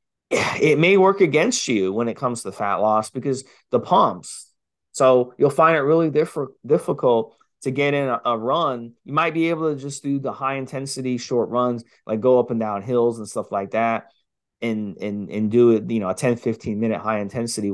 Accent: American